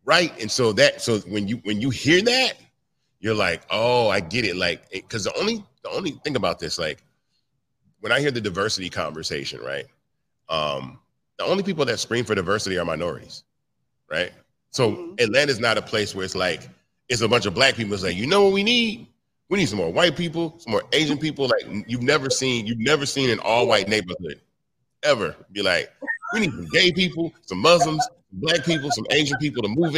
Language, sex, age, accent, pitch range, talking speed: English, male, 30-49, American, 105-175 Hz, 205 wpm